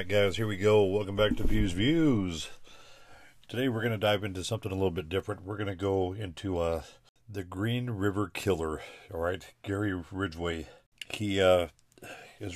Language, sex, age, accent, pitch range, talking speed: English, male, 40-59, American, 90-105 Hz, 165 wpm